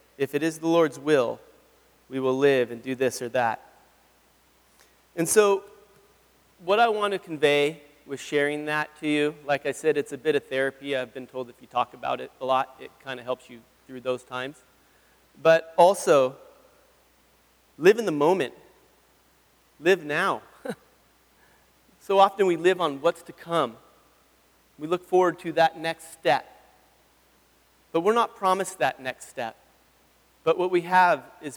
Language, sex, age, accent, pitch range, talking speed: English, male, 30-49, American, 130-165 Hz, 165 wpm